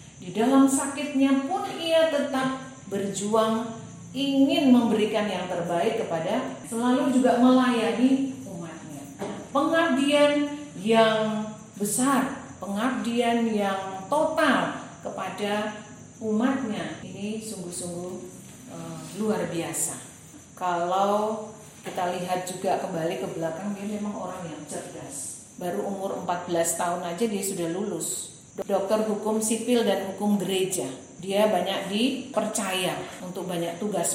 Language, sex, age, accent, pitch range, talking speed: Indonesian, female, 40-59, native, 175-235 Hz, 105 wpm